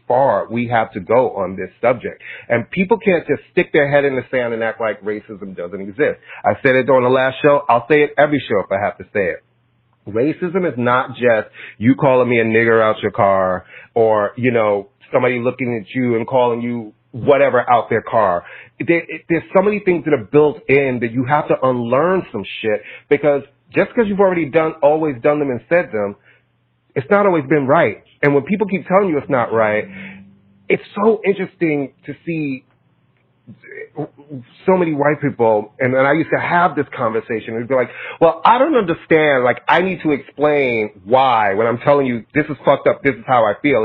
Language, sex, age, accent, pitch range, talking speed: English, male, 30-49, American, 120-160 Hz, 210 wpm